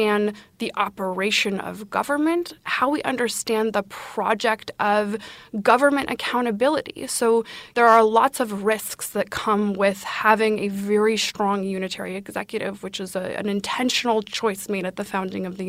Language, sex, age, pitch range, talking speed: English, female, 20-39, 200-245 Hz, 145 wpm